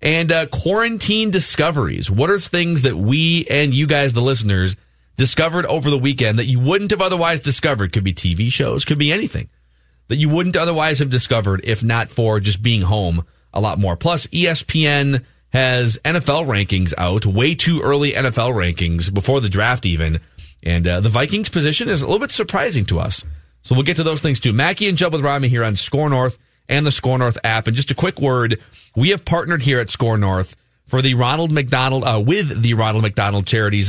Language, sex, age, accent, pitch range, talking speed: English, male, 30-49, American, 110-150 Hz, 205 wpm